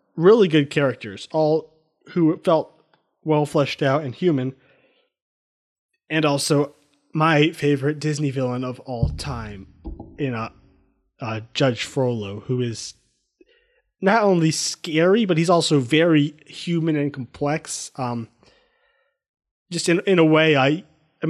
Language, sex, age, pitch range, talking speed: English, male, 20-39, 135-165 Hz, 130 wpm